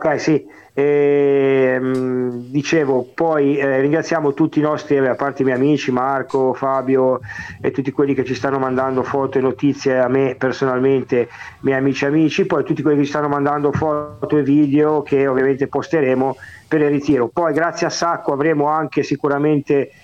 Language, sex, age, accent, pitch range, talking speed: Italian, male, 50-69, native, 130-150 Hz, 170 wpm